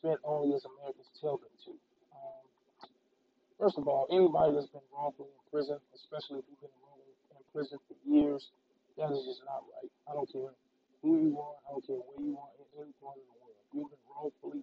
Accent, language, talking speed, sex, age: American, English, 205 wpm, male, 20-39